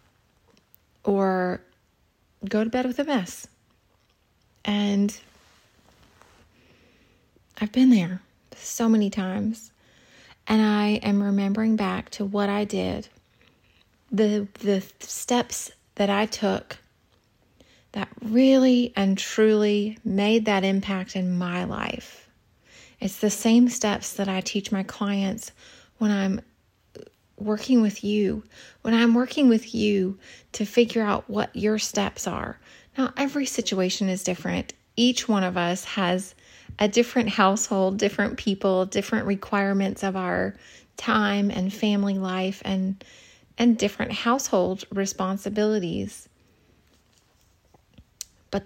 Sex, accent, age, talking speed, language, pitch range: female, American, 30-49, 115 wpm, English, 195-220 Hz